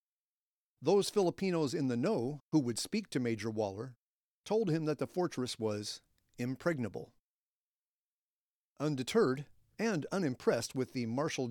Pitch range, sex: 120-160 Hz, male